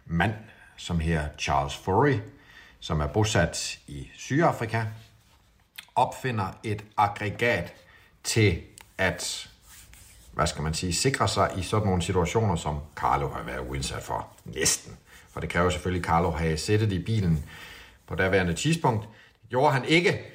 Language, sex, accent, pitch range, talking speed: Danish, male, native, 85-115 Hz, 140 wpm